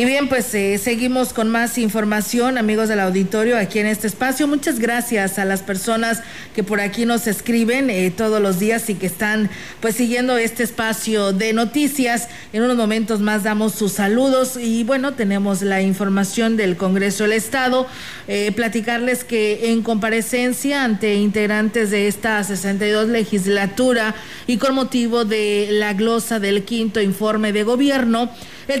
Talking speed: 160 wpm